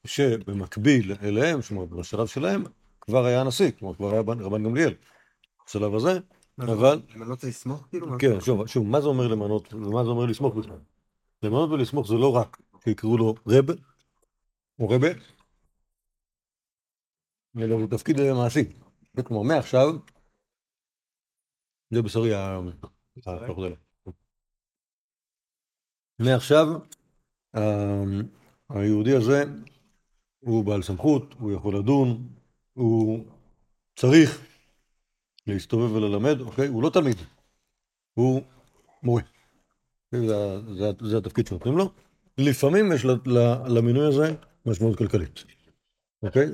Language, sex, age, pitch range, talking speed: Hebrew, male, 60-79, 105-135 Hz, 105 wpm